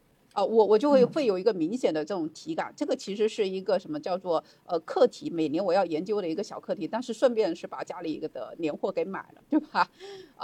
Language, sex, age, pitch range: Chinese, female, 50-69, 175-275 Hz